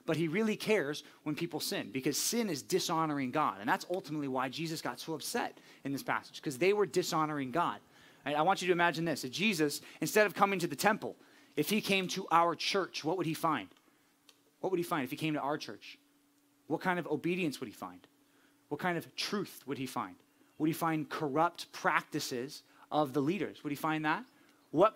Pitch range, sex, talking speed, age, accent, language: 150-180 Hz, male, 215 wpm, 30-49, American, English